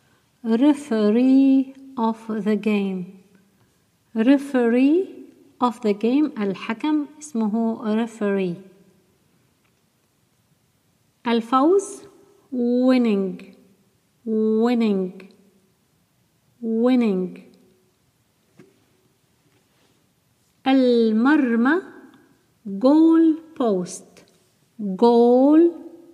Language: Arabic